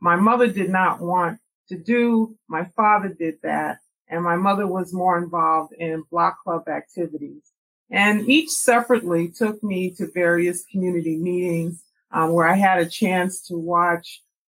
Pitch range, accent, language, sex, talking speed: 175-220 Hz, American, English, female, 155 wpm